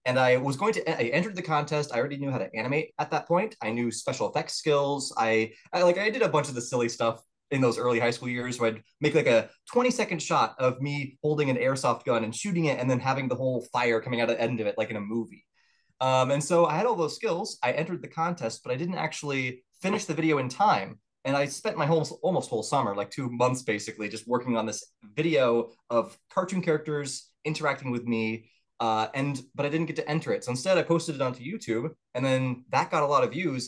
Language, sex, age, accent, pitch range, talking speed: English, male, 20-39, American, 120-155 Hz, 255 wpm